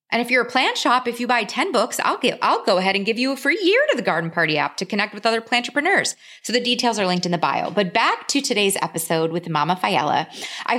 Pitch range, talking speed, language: 165-225 Hz, 280 wpm, English